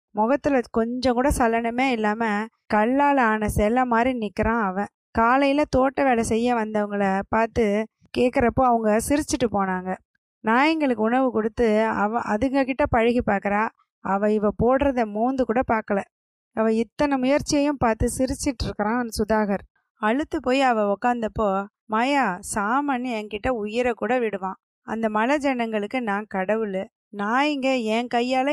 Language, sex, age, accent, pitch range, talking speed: Tamil, female, 20-39, native, 215-255 Hz, 120 wpm